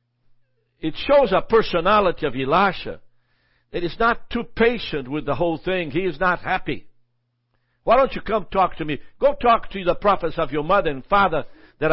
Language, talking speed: English, 185 wpm